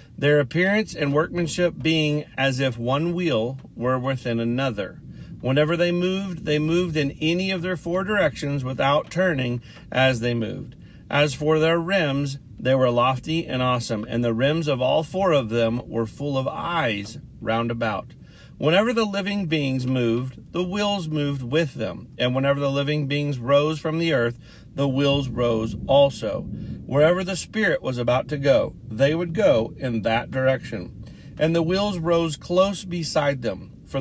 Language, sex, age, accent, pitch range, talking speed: English, male, 40-59, American, 125-165 Hz, 170 wpm